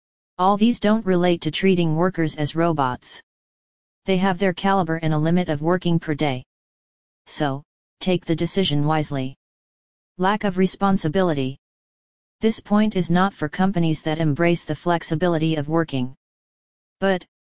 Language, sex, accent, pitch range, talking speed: English, female, American, 155-185 Hz, 140 wpm